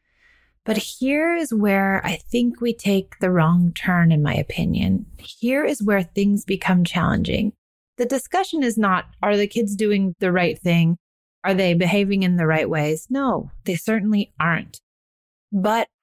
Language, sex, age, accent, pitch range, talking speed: English, female, 30-49, American, 170-215 Hz, 160 wpm